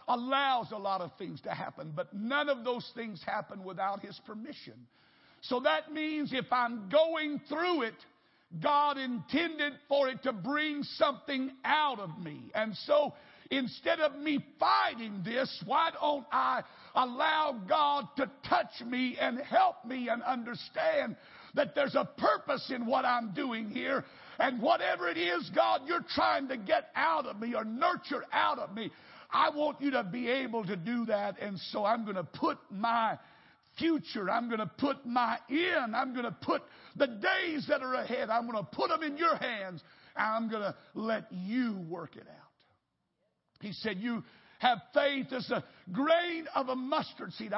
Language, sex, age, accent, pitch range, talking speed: English, male, 60-79, American, 215-290 Hz, 180 wpm